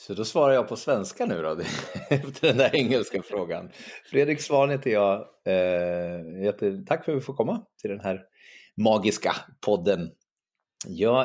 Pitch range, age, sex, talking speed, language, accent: 100-135 Hz, 30-49, male, 155 wpm, Swedish, native